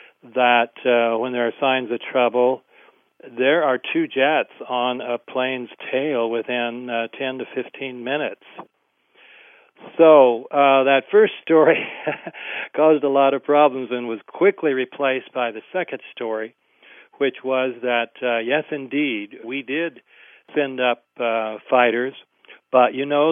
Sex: male